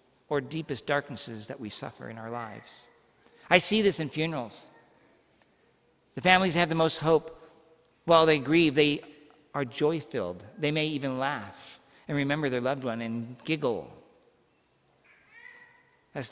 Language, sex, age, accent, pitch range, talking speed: English, male, 50-69, American, 130-190 Hz, 140 wpm